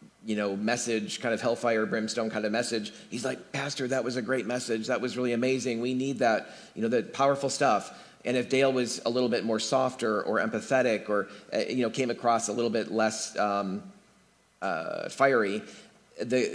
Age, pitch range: 40-59, 110-130 Hz